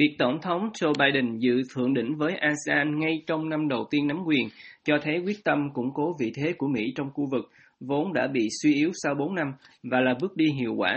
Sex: male